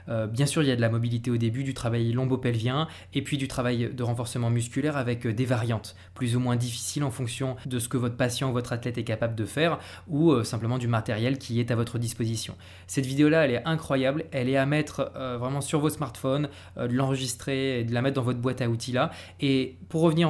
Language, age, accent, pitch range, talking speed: French, 20-39, French, 115-145 Hz, 235 wpm